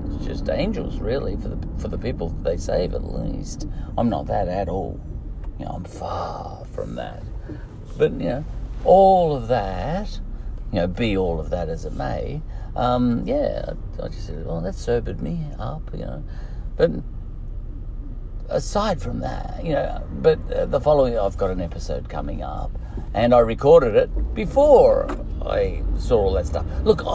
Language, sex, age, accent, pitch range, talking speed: English, male, 50-69, Australian, 85-120 Hz, 175 wpm